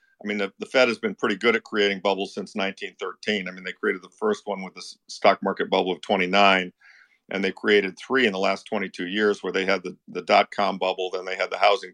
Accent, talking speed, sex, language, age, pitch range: American, 245 wpm, male, English, 50-69, 95-105 Hz